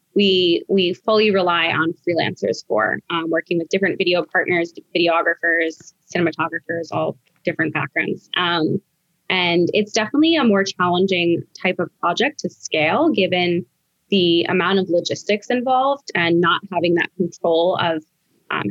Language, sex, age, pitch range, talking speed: English, female, 20-39, 170-200 Hz, 140 wpm